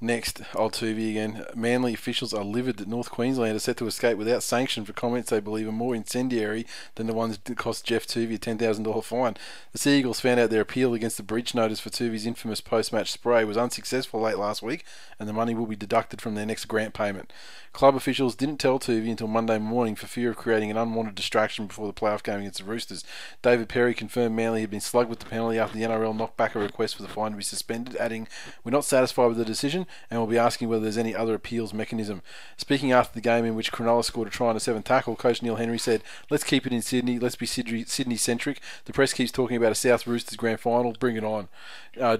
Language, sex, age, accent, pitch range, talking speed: English, male, 20-39, Australian, 110-120 Hz, 240 wpm